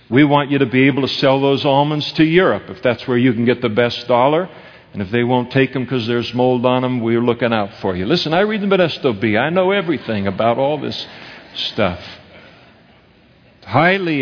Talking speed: 220 wpm